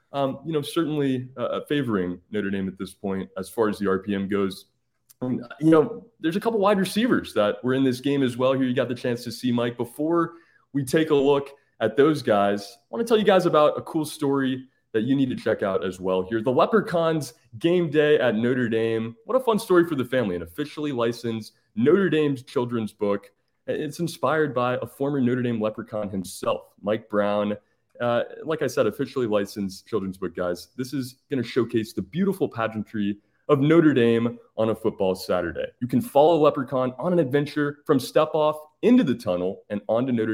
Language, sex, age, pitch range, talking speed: English, male, 20-39, 110-150 Hz, 205 wpm